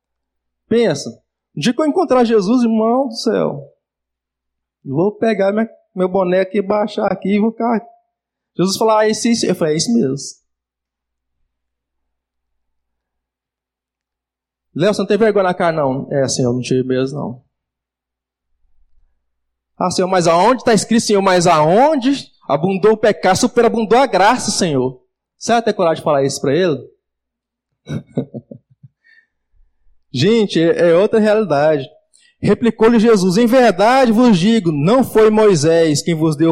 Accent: Brazilian